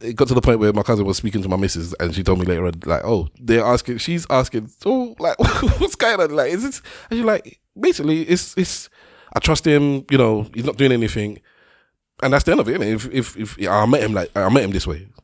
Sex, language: male, English